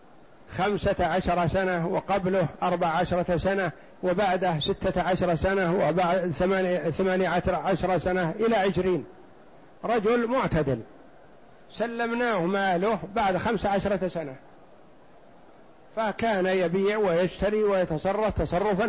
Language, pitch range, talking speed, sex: Arabic, 175-210 Hz, 90 wpm, male